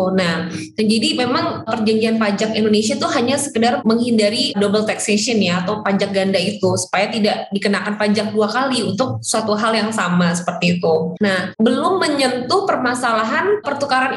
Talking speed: 150 wpm